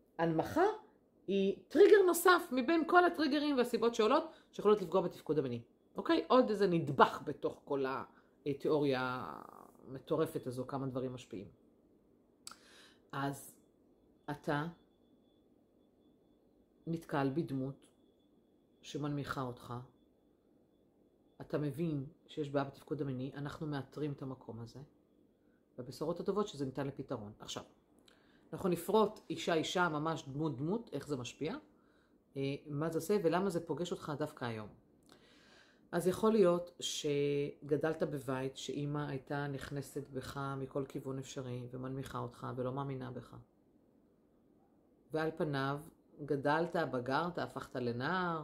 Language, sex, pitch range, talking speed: Hebrew, female, 135-175 Hz, 110 wpm